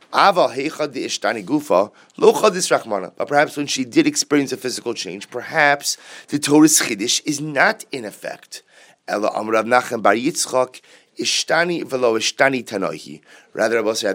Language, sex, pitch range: English, male, 110-145 Hz